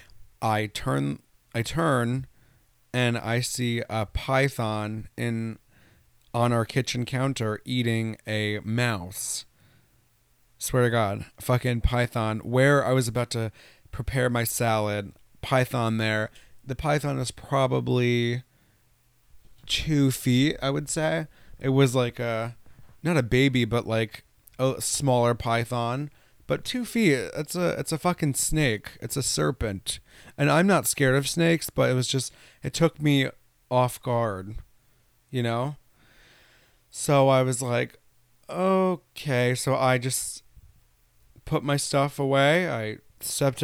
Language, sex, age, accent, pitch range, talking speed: English, male, 30-49, American, 110-135 Hz, 130 wpm